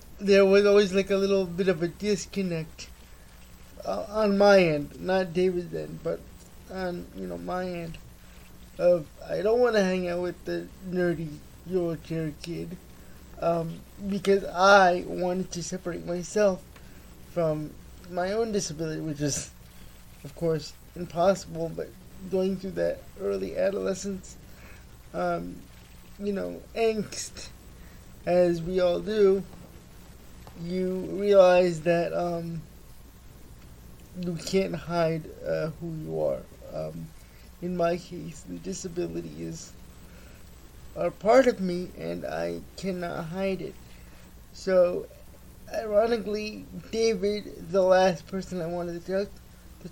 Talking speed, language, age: 120 wpm, English, 20-39